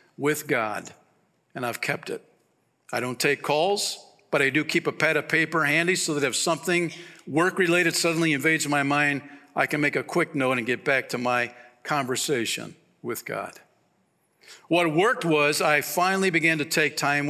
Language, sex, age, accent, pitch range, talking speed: English, male, 50-69, American, 140-175 Hz, 175 wpm